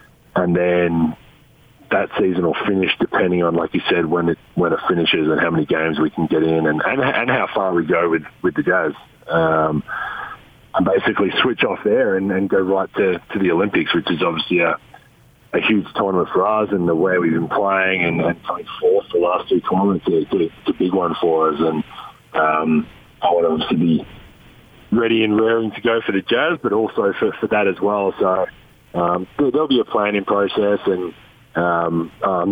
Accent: Australian